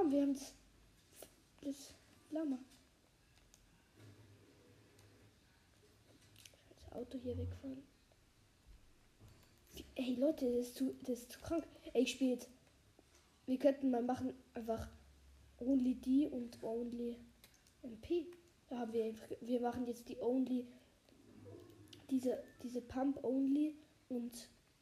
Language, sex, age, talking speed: German, female, 20-39, 105 wpm